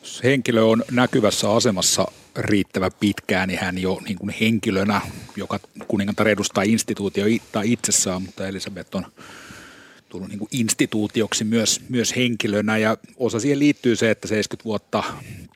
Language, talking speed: Finnish, 125 wpm